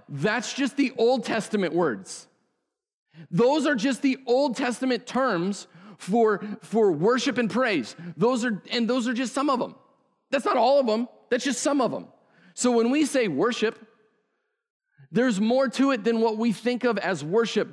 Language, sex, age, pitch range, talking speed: English, male, 40-59, 175-245 Hz, 180 wpm